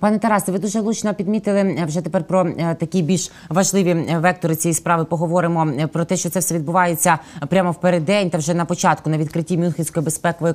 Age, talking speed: 20-39, 180 wpm